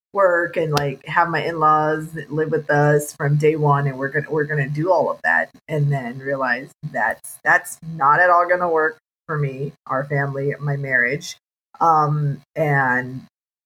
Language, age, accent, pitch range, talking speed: English, 30-49, American, 140-165 Hz, 170 wpm